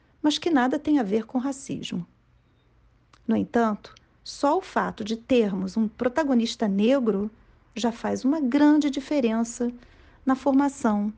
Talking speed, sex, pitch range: 135 wpm, female, 215-280 Hz